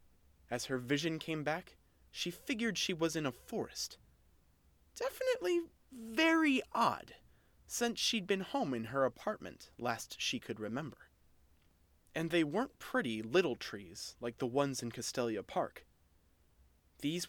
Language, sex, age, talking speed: English, male, 30-49, 135 wpm